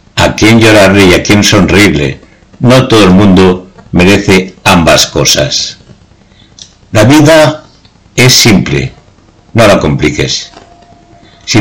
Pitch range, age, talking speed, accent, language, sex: 90-120 Hz, 60-79, 110 wpm, Spanish, Spanish, male